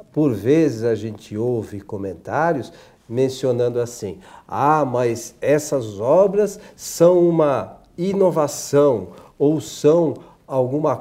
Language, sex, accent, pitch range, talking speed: Portuguese, male, Brazilian, 125-175 Hz, 100 wpm